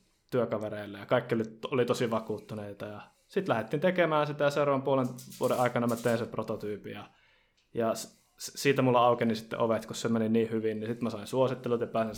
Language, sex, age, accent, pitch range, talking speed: Finnish, male, 20-39, native, 115-135 Hz, 185 wpm